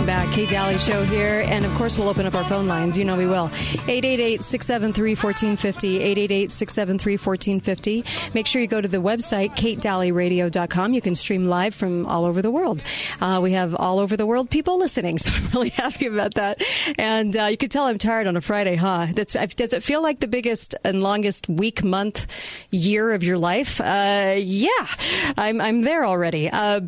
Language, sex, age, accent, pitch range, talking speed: English, female, 40-59, American, 180-215 Hz, 190 wpm